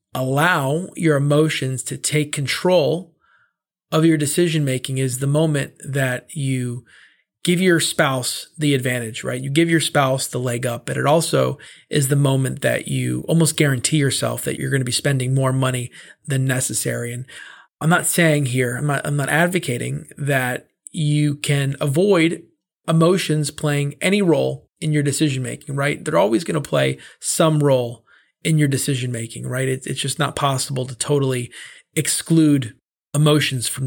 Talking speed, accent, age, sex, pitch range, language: 160 wpm, American, 30-49, male, 130-160 Hz, English